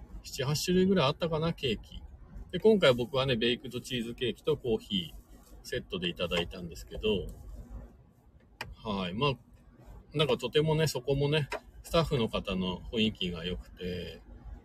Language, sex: Japanese, male